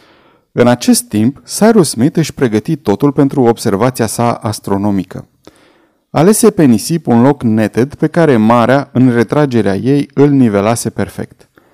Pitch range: 115-150 Hz